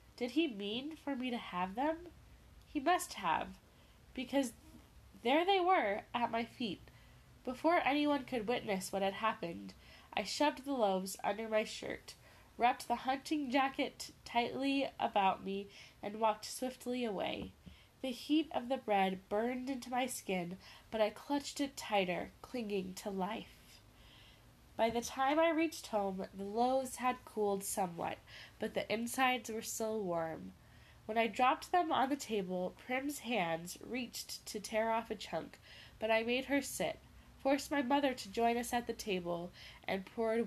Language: English